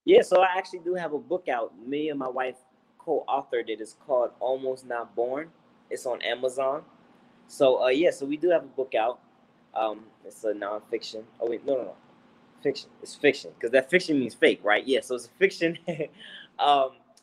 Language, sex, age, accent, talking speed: English, male, 20-39, American, 200 wpm